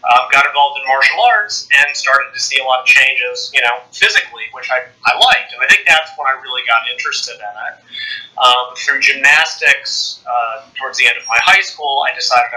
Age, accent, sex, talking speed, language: 30-49, American, male, 220 wpm, English